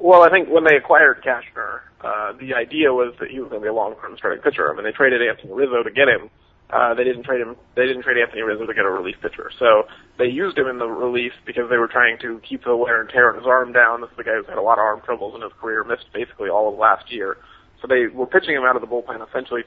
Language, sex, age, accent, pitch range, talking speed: English, male, 30-49, American, 120-150 Hz, 295 wpm